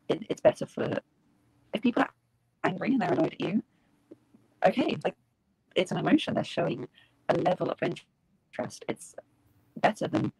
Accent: British